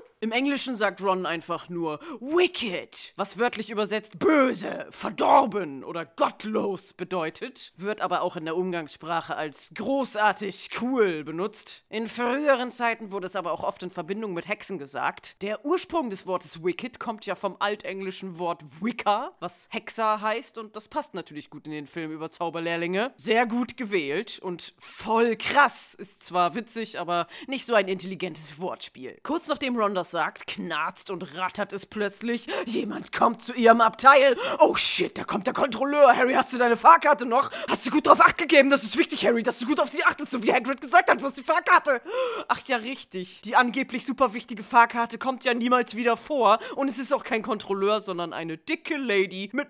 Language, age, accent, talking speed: German, 30-49, German, 185 wpm